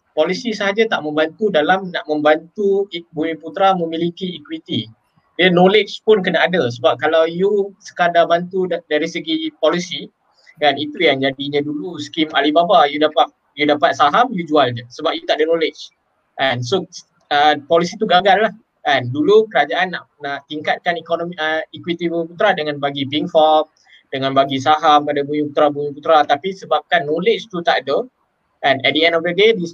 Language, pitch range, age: Malay, 150-185 Hz, 20-39